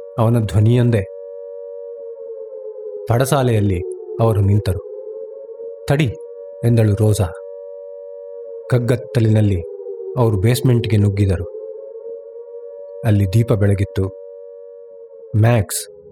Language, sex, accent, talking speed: Kannada, male, native, 60 wpm